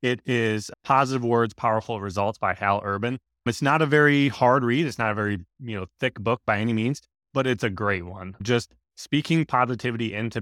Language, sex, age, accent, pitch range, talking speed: English, male, 20-39, American, 110-140 Hz, 200 wpm